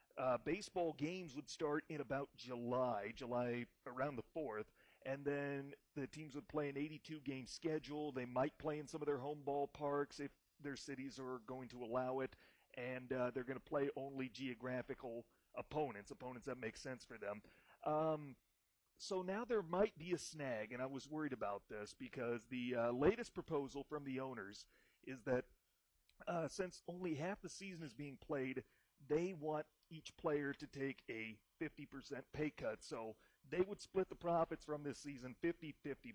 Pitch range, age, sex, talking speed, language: 130-155 Hz, 40-59, male, 175 wpm, English